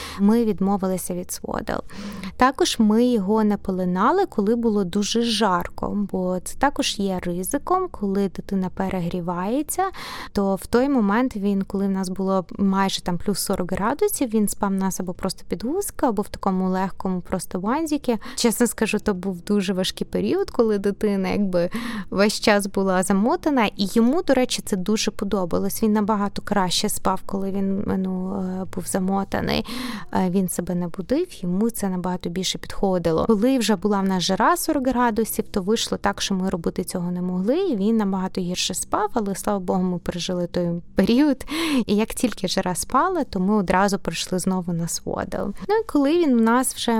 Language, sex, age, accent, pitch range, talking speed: Ukrainian, female, 20-39, native, 190-235 Hz, 170 wpm